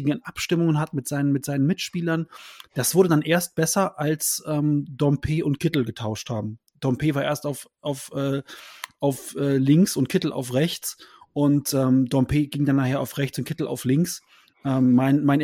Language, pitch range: German, 130-155 Hz